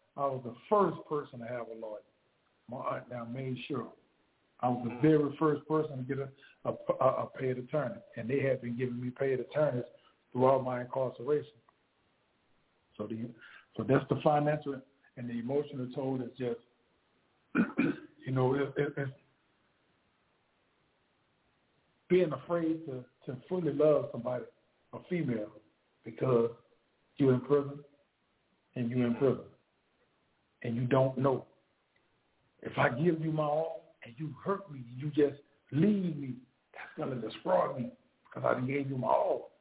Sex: male